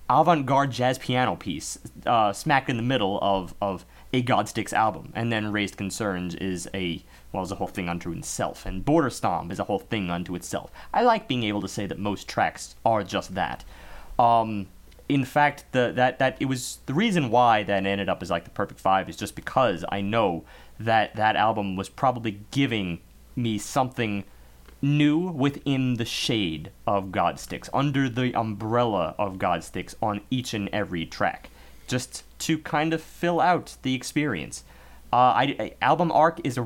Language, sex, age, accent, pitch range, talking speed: English, male, 30-49, American, 100-140 Hz, 180 wpm